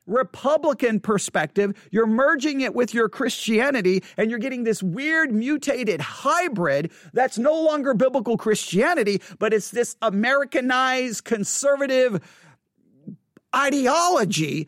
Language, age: English, 40-59